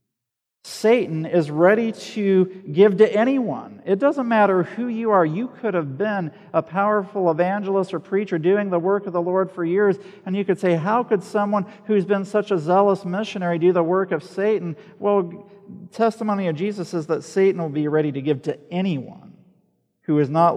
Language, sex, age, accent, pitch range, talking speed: English, male, 50-69, American, 140-190 Hz, 190 wpm